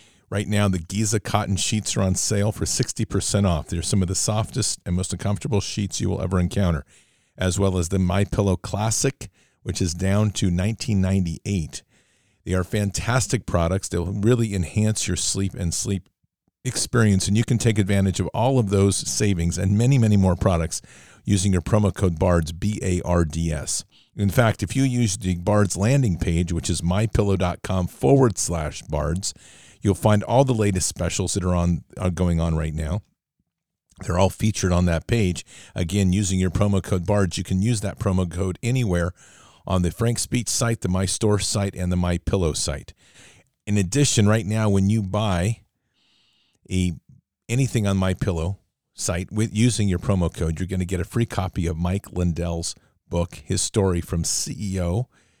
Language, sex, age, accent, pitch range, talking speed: English, male, 50-69, American, 90-105 Hz, 180 wpm